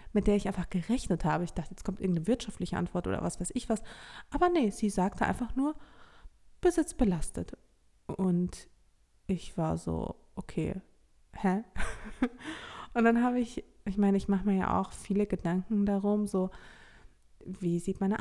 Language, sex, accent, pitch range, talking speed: German, female, German, 185-235 Hz, 165 wpm